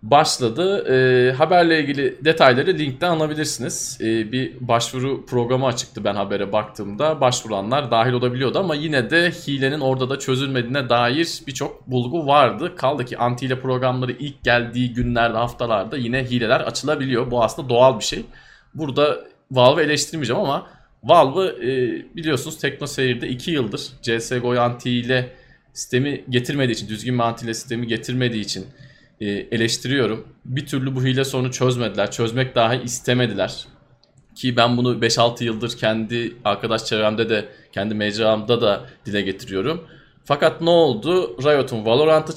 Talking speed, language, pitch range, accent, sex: 140 wpm, Turkish, 115-145 Hz, native, male